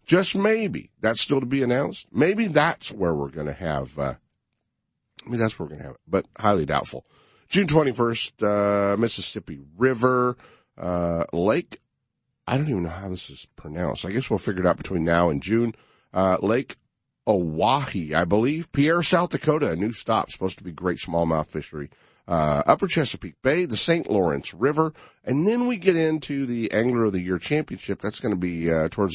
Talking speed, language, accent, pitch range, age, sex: 195 wpm, English, American, 90-130 Hz, 50-69, male